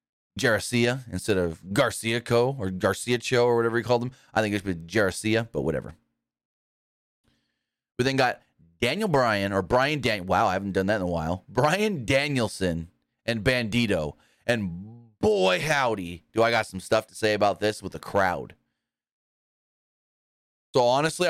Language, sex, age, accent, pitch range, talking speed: English, male, 30-49, American, 105-140 Hz, 160 wpm